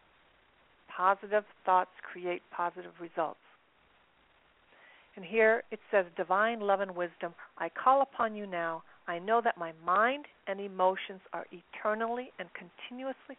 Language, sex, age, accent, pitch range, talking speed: English, female, 50-69, American, 180-225 Hz, 130 wpm